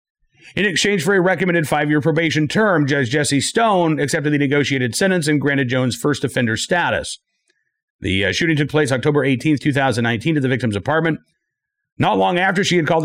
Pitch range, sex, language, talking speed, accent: 130-170 Hz, male, English, 180 wpm, American